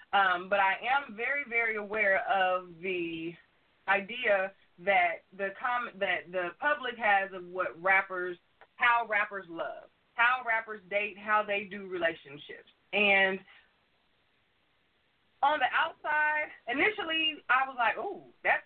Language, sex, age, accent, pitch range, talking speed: English, female, 20-39, American, 190-250 Hz, 130 wpm